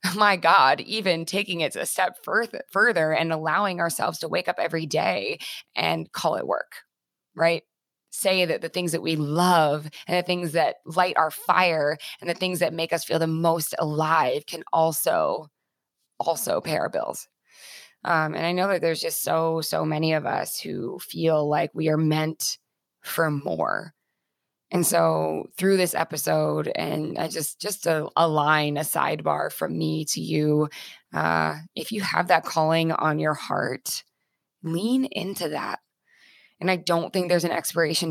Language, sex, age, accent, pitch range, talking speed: English, female, 20-39, American, 155-175 Hz, 170 wpm